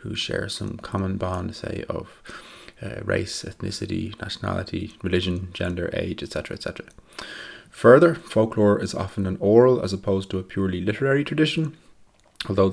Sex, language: male, English